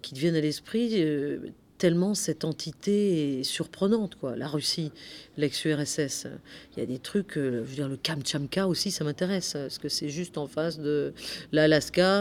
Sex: female